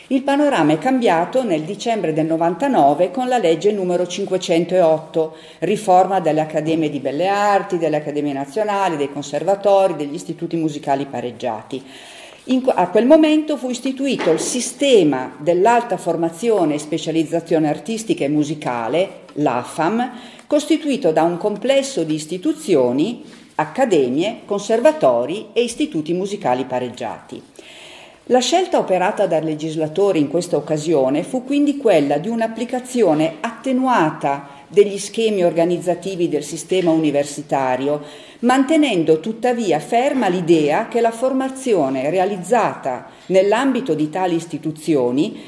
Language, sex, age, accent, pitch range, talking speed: Italian, female, 50-69, native, 155-255 Hz, 115 wpm